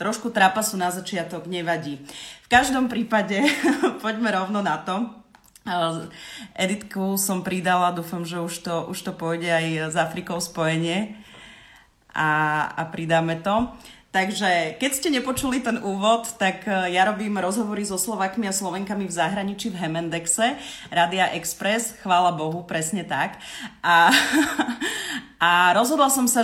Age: 30-49